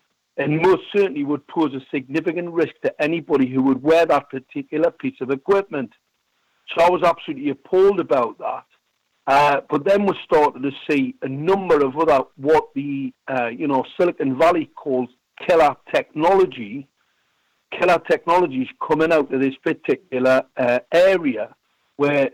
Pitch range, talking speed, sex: 140-195 Hz, 150 wpm, male